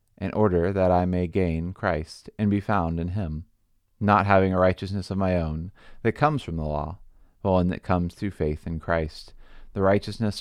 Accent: American